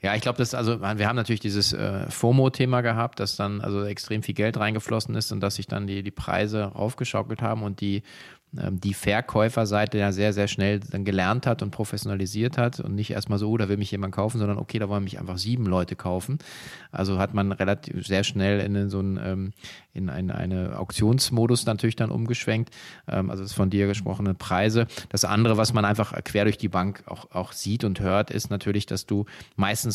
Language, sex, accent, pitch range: German, male, German, 100-115 Hz